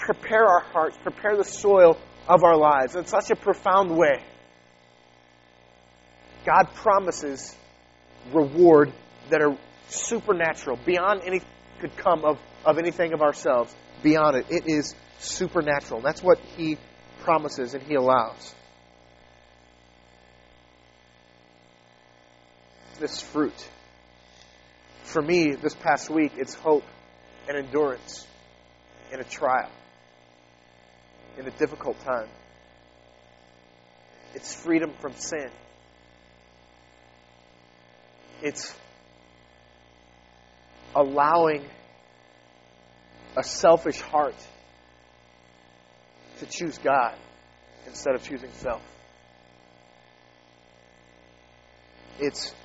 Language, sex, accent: English, male, American